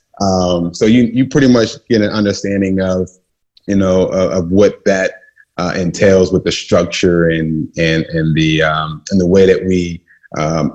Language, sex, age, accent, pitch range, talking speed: English, male, 30-49, American, 85-100 Hz, 180 wpm